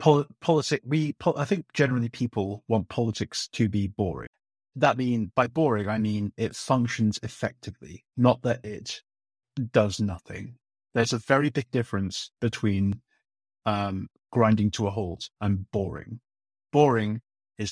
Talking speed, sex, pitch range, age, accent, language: 135 wpm, male, 105-125 Hz, 30-49, British, English